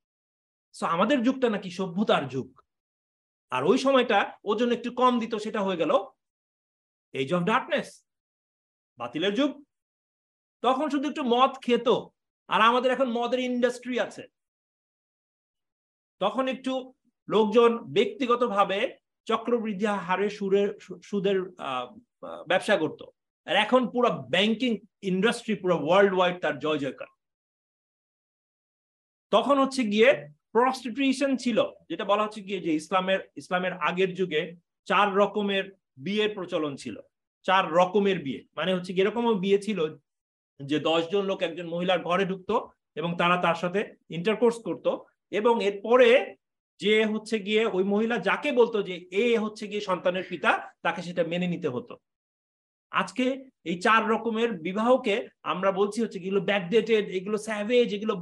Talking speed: 80 wpm